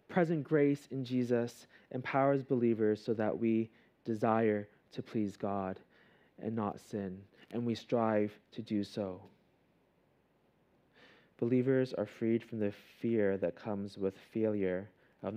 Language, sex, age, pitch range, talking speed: English, male, 20-39, 95-120 Hz, 130 wpm